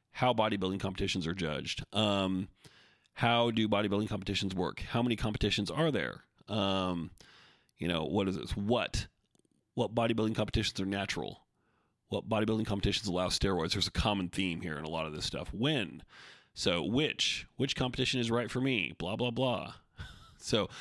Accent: American